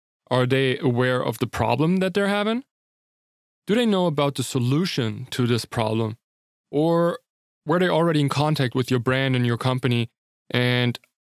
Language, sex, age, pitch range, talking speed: English, male, 20-39, 120-150 Hz, 165 wpm